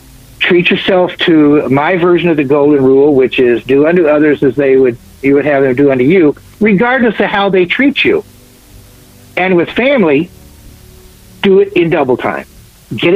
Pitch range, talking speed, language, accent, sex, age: 145-205 Hz, 180 wpm, English, American, male, 60-79